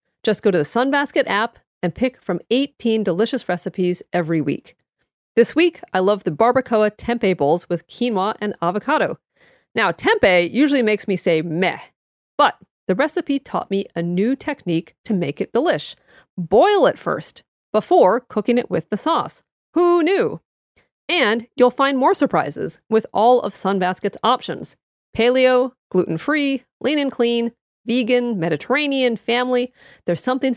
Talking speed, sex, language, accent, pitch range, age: 150 wpm, female, English, American, 190-270 Hz, 40-59